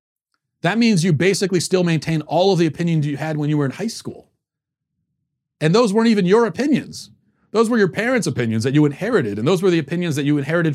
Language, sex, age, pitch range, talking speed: English, male, 40-59, 130-185 Hz, 225 wpm